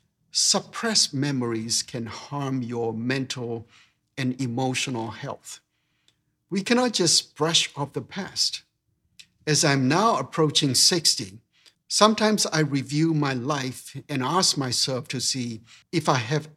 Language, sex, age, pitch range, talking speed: English, male, 60-79, 125-155 Hz, 125 wpm